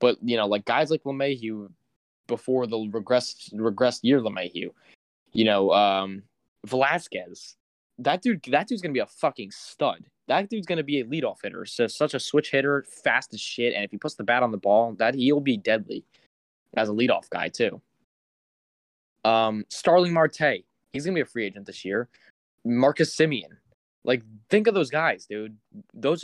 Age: 10-29